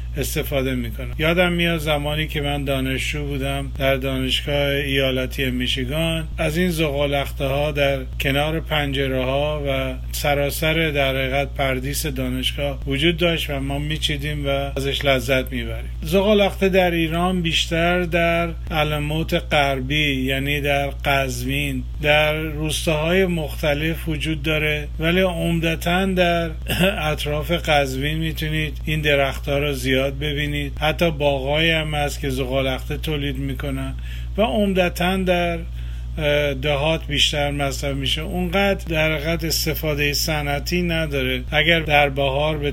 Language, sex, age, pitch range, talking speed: Persian, male, 50-69, 140-160 Hz, 125 wpm